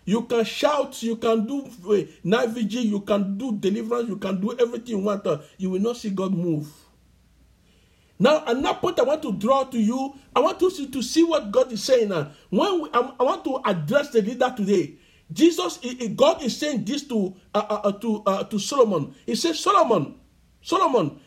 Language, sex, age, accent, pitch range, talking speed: English, male, 50-69, Nigerian, 205-285 Hz, 200 wpm